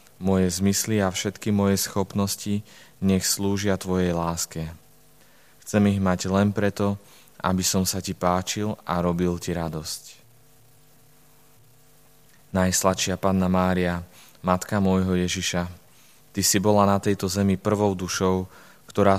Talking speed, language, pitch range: 120 wpm, Slovak, 90-105 Hz